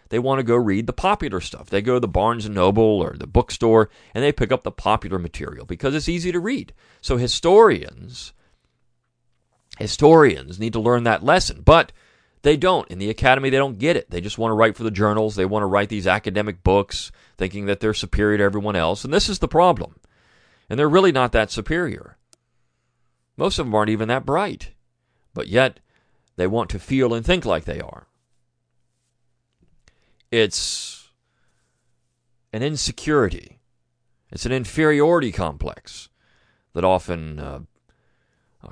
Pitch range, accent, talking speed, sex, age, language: 90-120 Hz, American, 170 wpm, male, 40-59, English